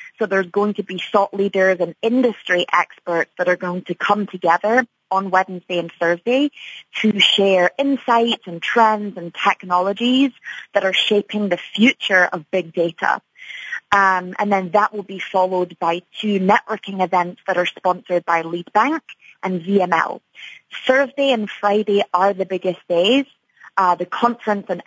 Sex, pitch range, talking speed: female, 180-215 Hz, 155 wpm